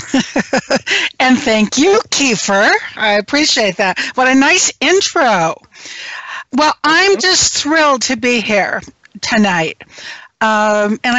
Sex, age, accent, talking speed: female, 60-79, American, 115 wpm